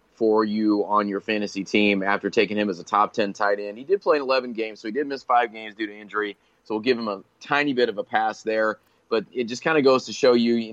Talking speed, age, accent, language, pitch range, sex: 285 wpm, 30-49, American, English, 105-120 Hz, male